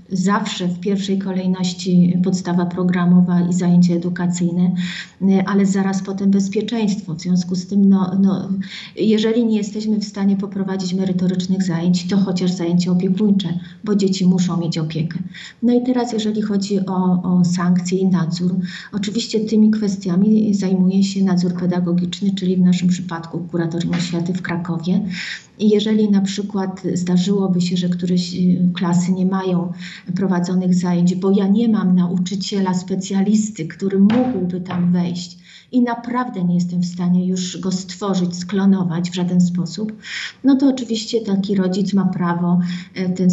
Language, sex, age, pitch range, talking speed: Polish, female, 40-59, 180-200 Hz, 140 wpm